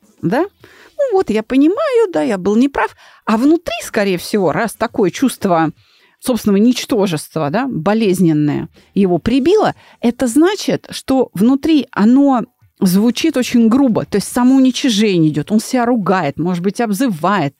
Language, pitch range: Russian, 200-280 Hz